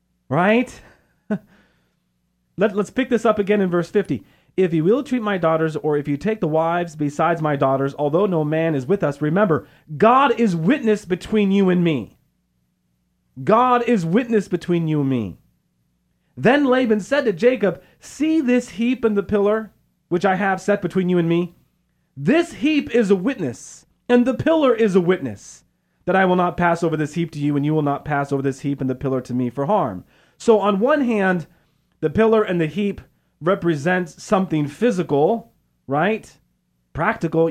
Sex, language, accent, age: male, English, American, 40-59